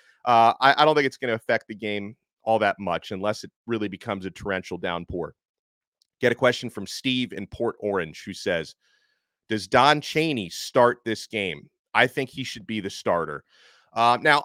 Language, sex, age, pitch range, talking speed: English, male, 30-49, 120-155 Hz, 190 wpm